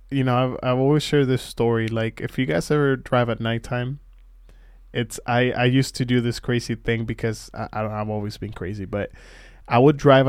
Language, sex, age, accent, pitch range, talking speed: English, male, 20-39, American, 110-125 Hz, 215 wpm